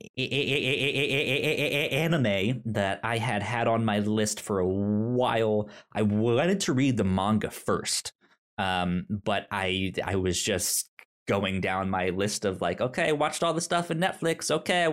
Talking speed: 160 wpm